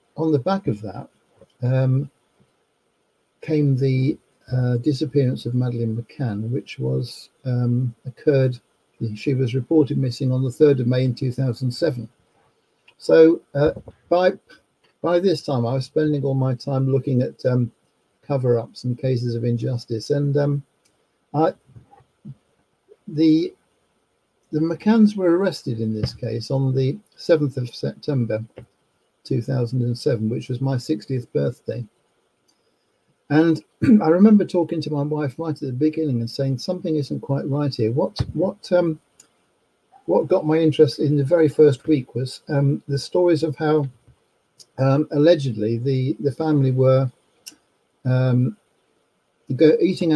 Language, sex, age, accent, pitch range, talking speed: English, male, 60-79, British, 125-155 Hz, 140 wpm